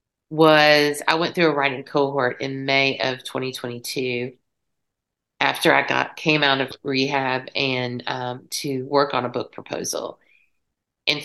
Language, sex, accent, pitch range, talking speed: English, female, American, 135-160 Hz, 145 wpm